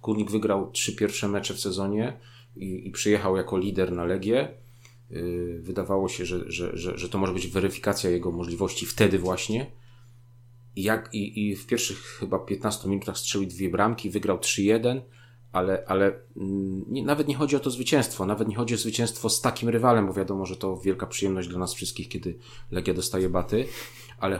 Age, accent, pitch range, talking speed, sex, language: 40-59, native, 100-120 Hz, 180 wpm, male, Polish